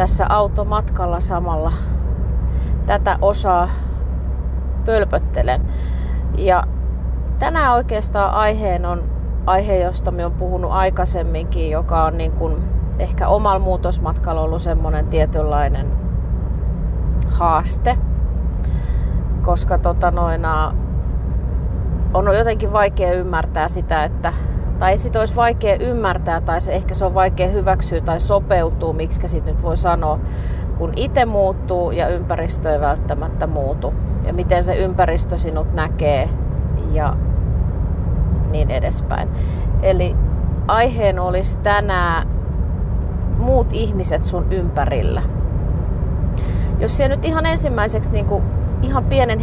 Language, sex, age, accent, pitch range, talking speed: Finnish, female, 30-49, native, 65-95 Hz, 105 wpm